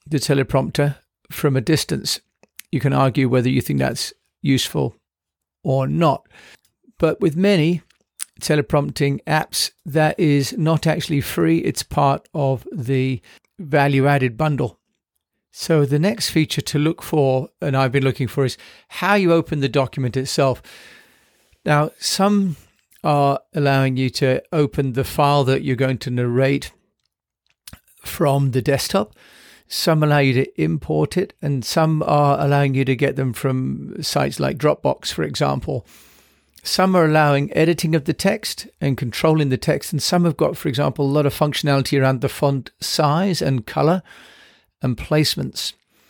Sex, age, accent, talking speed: male, 50-69, British, 150 wpm